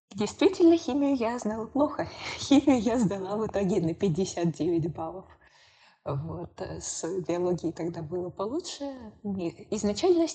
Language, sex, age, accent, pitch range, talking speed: Russian, female, 20-39, native, 185-210 Hz, 120 wpm